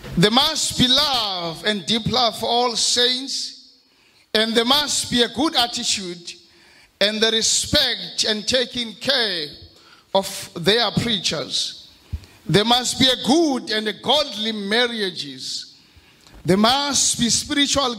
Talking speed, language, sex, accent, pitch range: 125 wpm, English, male, South African, 185-255 Hz